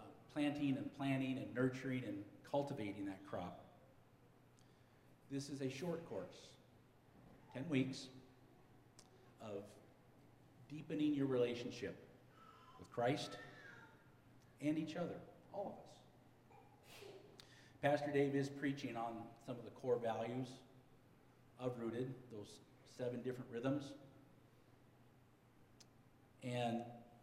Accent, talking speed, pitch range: American, 100 wpm, 125-140 Hz